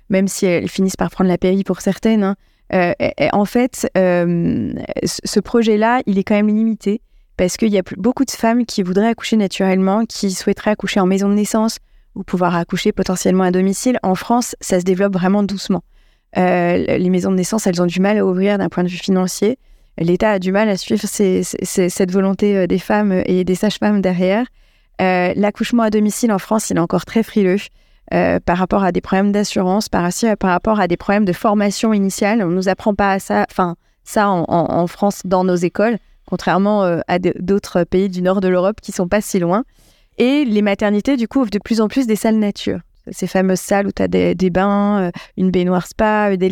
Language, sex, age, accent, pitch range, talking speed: French, female, 20-39, French, 185-210 Hz, 215 wpm